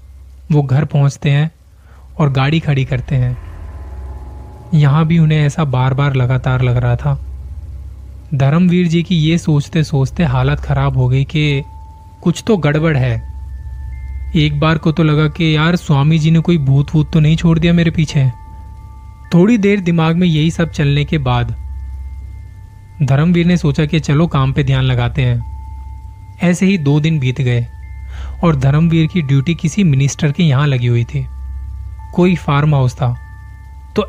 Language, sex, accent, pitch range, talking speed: Hindi, male, native, 115-160 Hz, 165 wpm